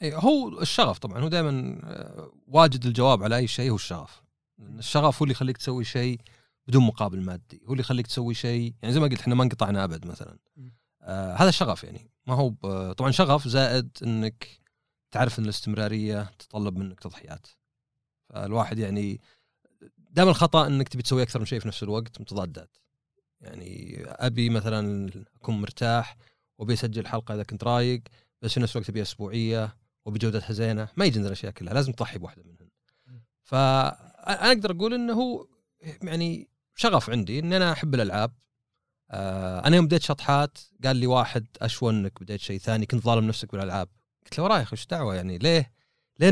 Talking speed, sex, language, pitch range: 165 wpm, male, Arabic, 105-135 Hz